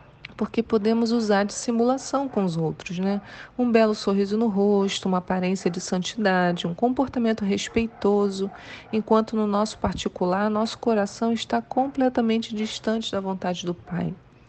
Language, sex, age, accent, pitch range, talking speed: Portuguese, female, 40-59, Brazilian, 185-220 Hz, 140 wpm